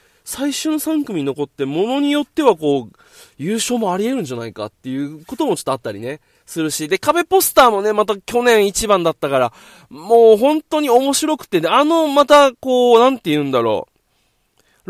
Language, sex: Japanese, male